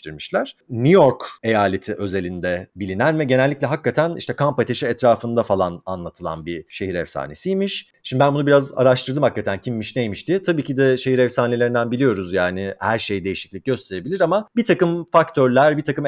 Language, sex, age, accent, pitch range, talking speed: Turkish, male, 30-49, native, 110-150 Hz, 160 wpm